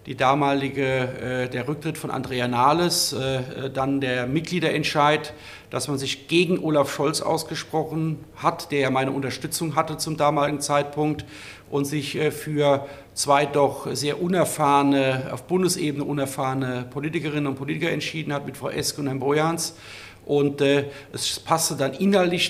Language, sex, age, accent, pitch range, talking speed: German, male, 50-69, German, 135-160 Hz, 140 wpm